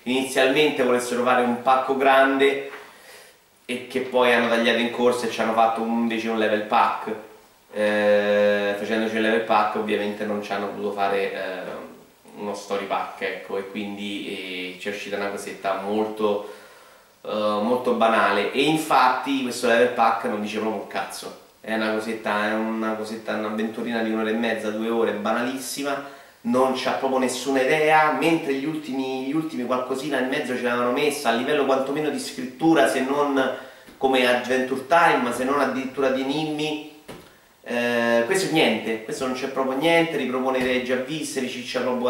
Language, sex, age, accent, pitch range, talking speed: Italian, male, 30-49, native, 110-135 Hz, 165 wpm